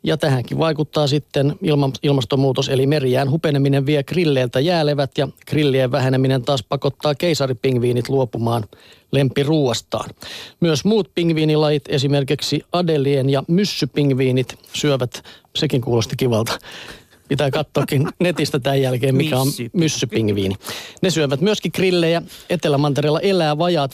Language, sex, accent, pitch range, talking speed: Finnish, male, native, 125-155 Hz, 115 wpm